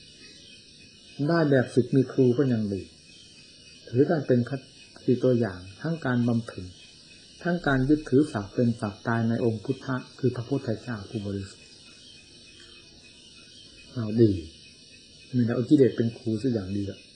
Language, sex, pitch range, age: Thai, male, 110-140 Hz, 60-79